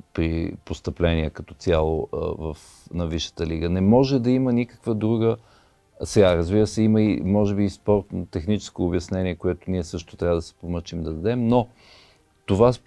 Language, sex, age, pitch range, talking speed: Bulgarian, male, 40-59, 95-115 Hz, 170 wpm